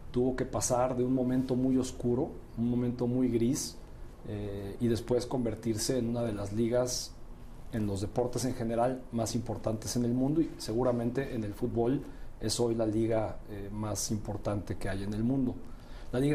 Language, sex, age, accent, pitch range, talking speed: Spanish, male, 40-59, Mexican, 110-125 Hz, 185 wpm